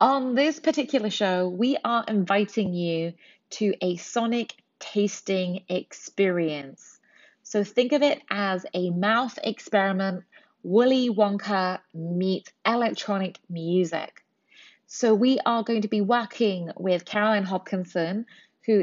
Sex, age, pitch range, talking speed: female, 30-49, 180-230 Hz, 120 wpm